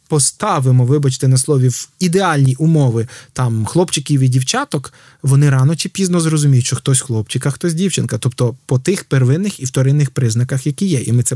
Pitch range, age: 135-190 Hz, 20-39